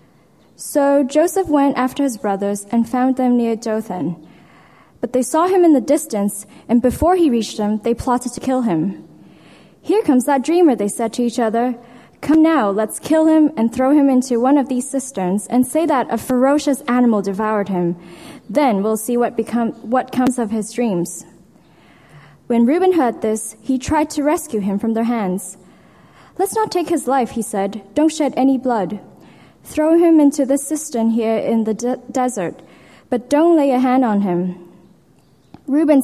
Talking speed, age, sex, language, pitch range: 180 wpm, 10-29, female, English, 220-280 Hz